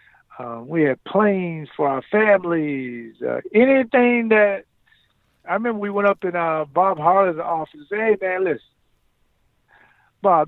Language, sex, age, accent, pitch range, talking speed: English, male, 50-69, American, 135-170 Hz, 150 wpm